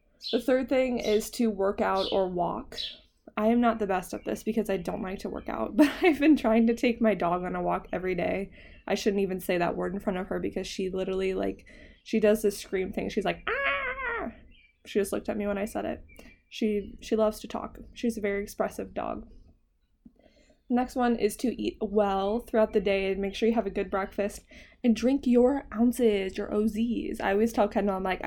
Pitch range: 185-225 Hz